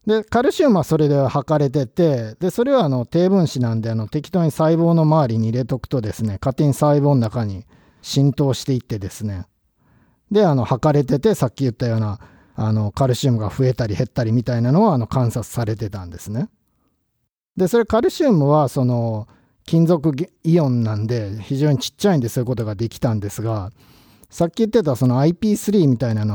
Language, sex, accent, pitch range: Japanese, male, native, 110-155 Hz